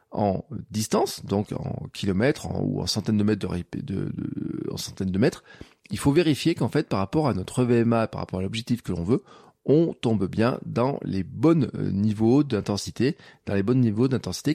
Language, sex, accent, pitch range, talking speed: French, male, French, 100-130 Hz, 200 wpm